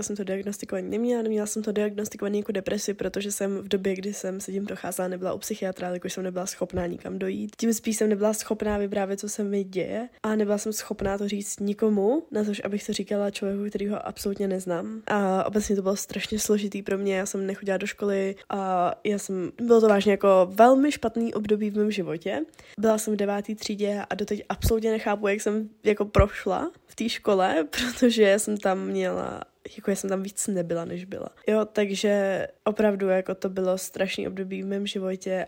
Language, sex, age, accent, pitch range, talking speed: Czech, female, 10-29, native, 195-220 Hz, 205 wpm